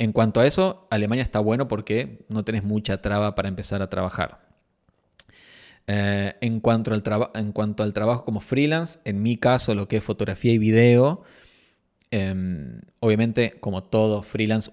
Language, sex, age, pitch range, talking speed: Spanish, male, 20-39, 105-125 Hz, 165 wpm